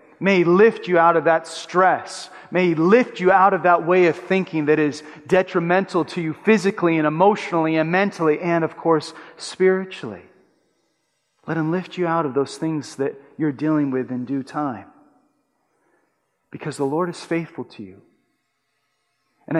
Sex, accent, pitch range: male, American, 135-175 Hz